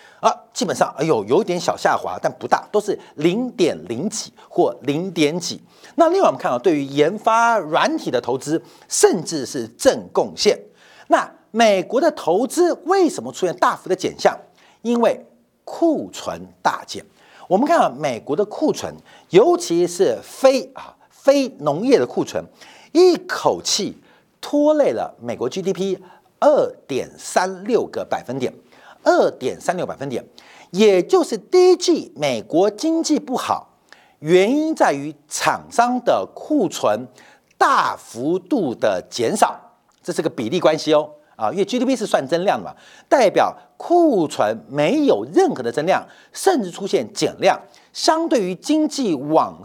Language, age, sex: Chinese, 50-69, male